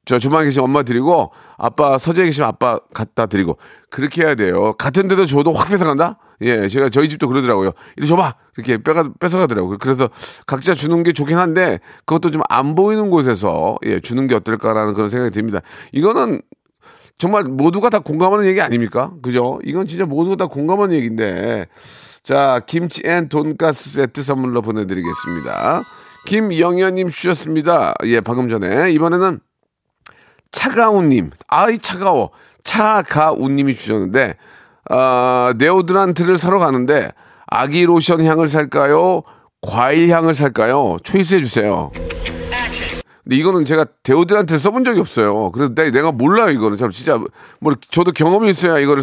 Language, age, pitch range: Korean, 40-59, 125-185 Hz